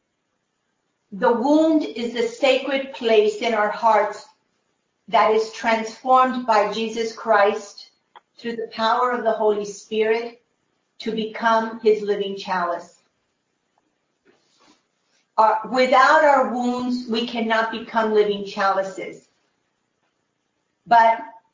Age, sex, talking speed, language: 50-69, female, 105 wpm, English